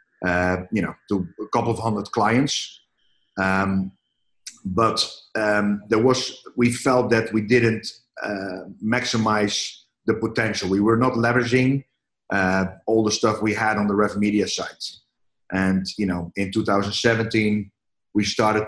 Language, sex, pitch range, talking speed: English, male, 95-115 Hz, 155 wpm